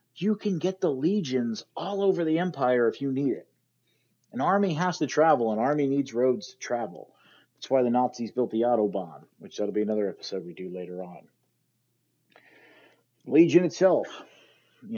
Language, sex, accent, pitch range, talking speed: English, male, American, 115-155 Hz, 170 wpm